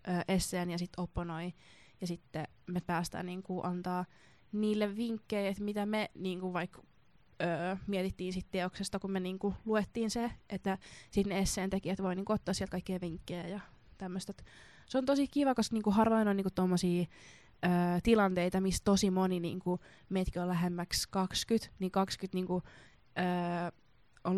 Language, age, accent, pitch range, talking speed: Finnish, 20-39, native, 180-210 Hz, 155 wpm